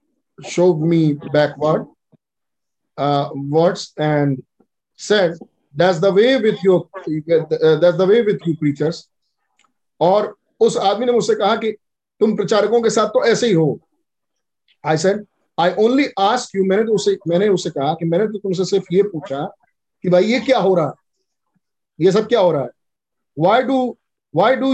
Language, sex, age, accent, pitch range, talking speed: Hindi, male, 50-69, native, 170-235 Hz, 175 wpm